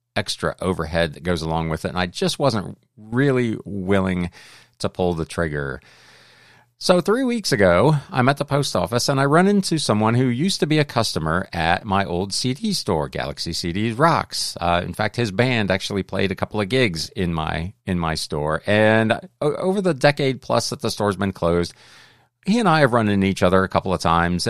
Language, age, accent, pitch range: English, 40-59, American, 95-140 Hz